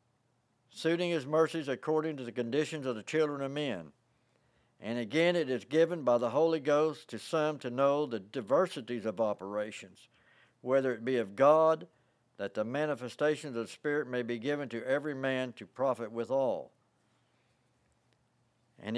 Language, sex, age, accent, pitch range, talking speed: English, male, 60-79, American, 120-160 Hz, 160 wpm